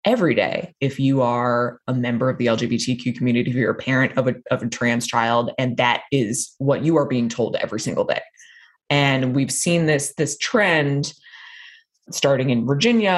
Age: 20-39